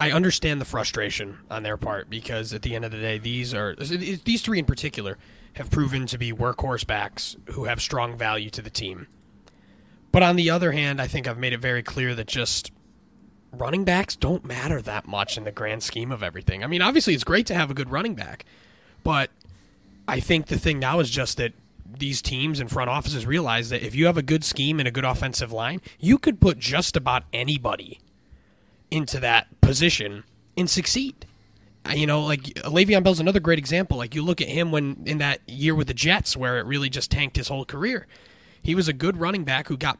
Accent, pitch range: American, 115-165 Hz